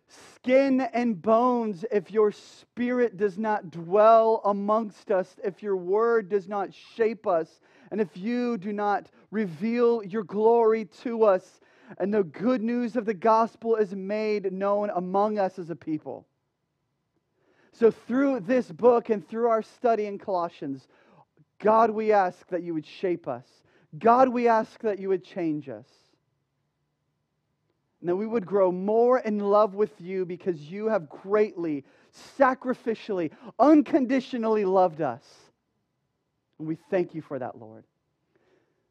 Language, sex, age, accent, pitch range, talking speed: English, male, 40-59, American, 170-225 Hz, 145 wpm